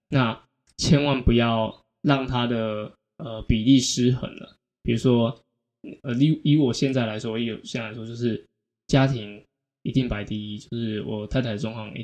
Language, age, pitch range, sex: Chinese, 10-29, 110-130 Hz, male